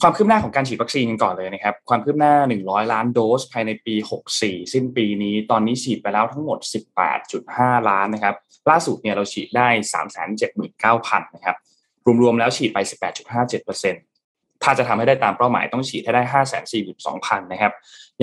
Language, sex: Thai, male